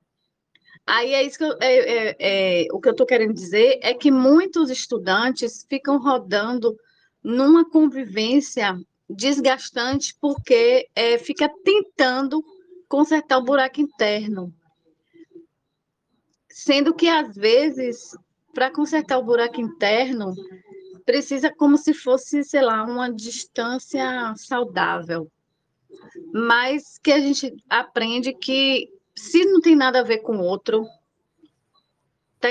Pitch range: 225-295 Hz